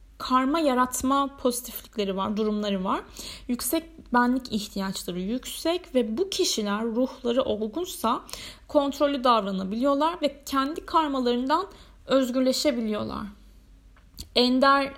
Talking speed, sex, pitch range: 90 wpm, female, 210-265 Hz